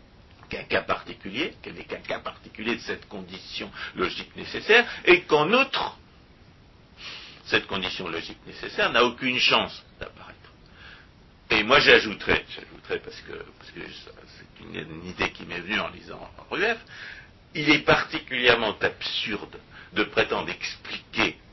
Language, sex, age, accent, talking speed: French, male, 60-79, French, 140 wpm